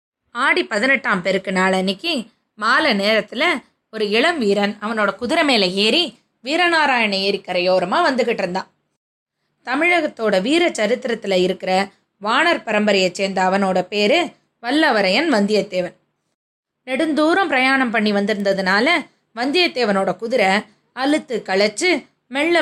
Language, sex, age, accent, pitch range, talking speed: Tamil, female, 20-39, native, 200-285 Hz, 100 wpm